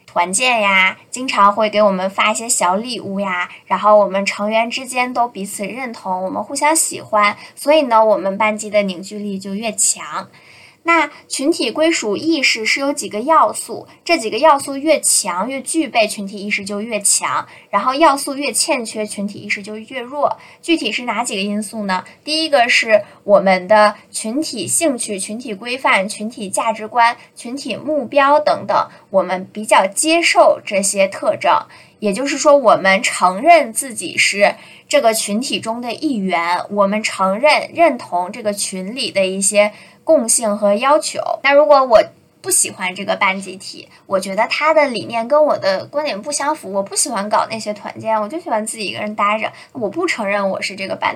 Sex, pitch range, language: female, 200-285 Hz, Chinese